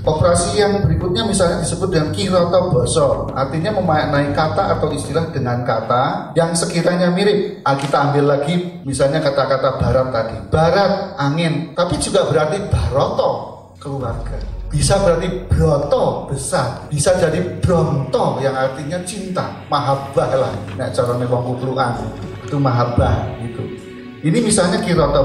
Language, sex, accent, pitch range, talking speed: Indonesian, male, native, 135-175 Hz, 135 wpm